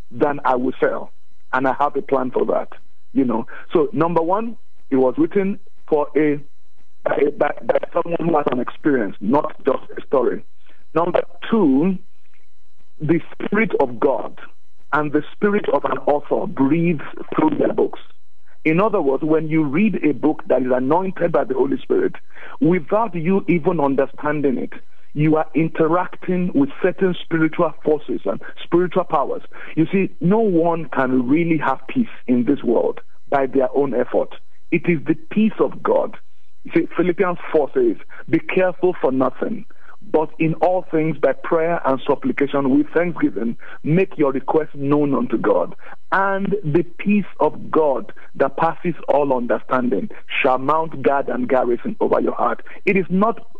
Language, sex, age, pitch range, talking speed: English, male, 50-69, 145-200 Hz, 160 wpm